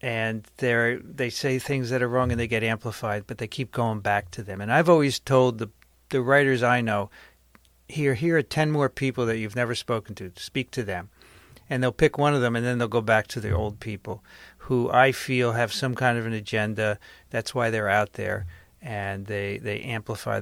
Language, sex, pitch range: English, male, 115-150 Hz